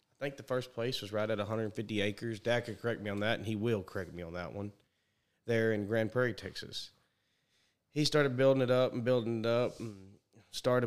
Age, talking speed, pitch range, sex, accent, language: 30-49, 220 wpm, 105-120 Hz, male, American, English